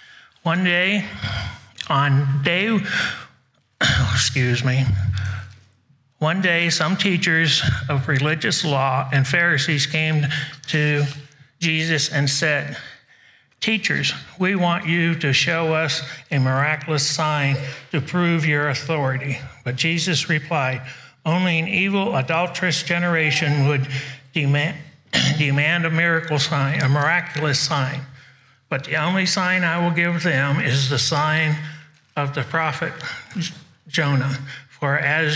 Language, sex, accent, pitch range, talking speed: English, male, American, 135-165 Hz, 115 wpm